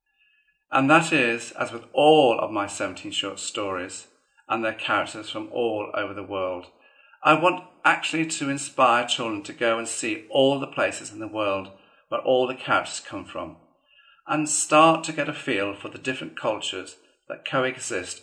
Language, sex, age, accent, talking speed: English, male, 50-69, British, 175 wpm